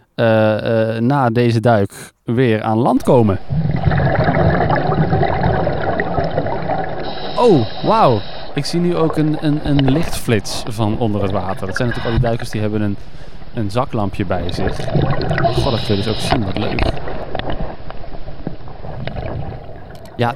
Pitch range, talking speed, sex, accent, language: 110-145 Hz, 135 wpm, male, Dutch, Dutch